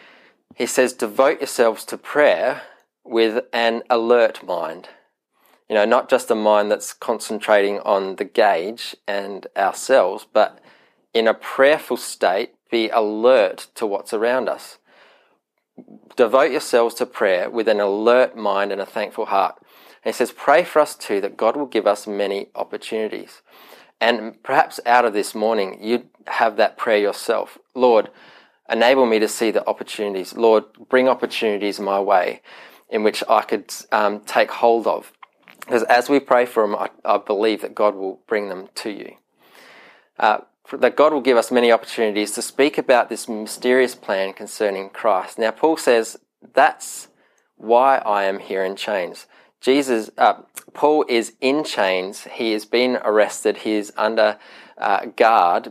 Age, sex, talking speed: 20-39, male, 160 wpm